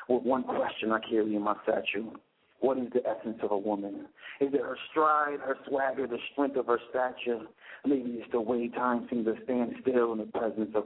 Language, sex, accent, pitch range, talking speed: English, male, American, 110-140 Hz, 215 wpm